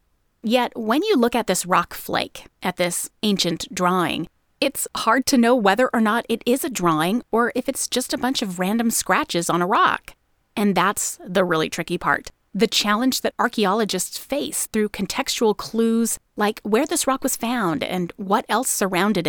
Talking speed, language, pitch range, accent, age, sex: 185 wpm, English, 190-255 Hz, American, 30-49, female